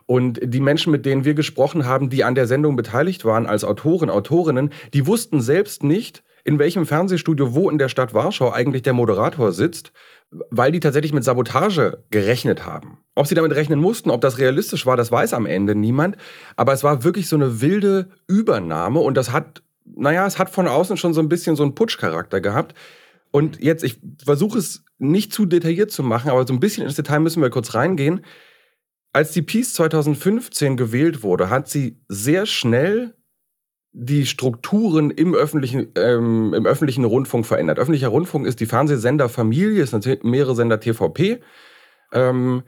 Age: 30-49